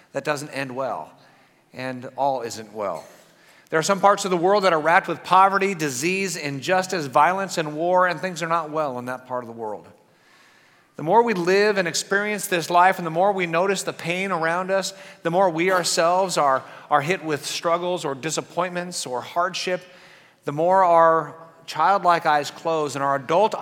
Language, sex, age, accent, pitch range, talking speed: English, male, 50-69, American, 155-190 Hz, 190 wpm